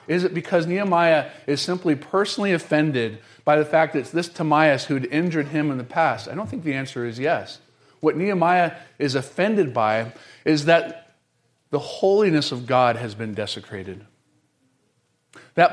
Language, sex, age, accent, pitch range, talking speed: English, male, 40-59, American, 120-155 Hz, 170 wpm